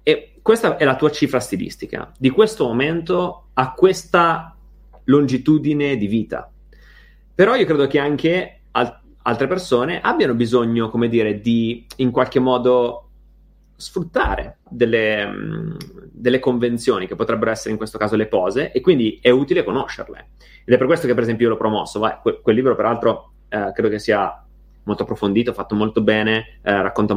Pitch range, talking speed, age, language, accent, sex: 110-150 Hz, 165 wpm, 30-49, Italian, native, male